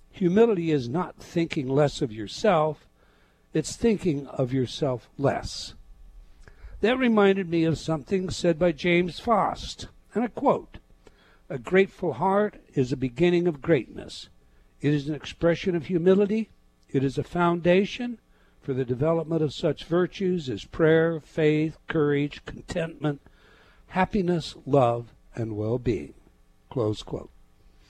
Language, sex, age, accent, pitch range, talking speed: English, male, 60-79, American, 145-190 Hz, 125 wpm